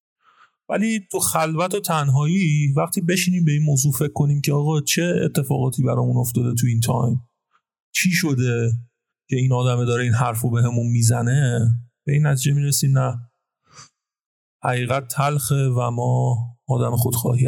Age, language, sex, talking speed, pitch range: 30-49, Persian, male, 150 wpm, 120-145 Hz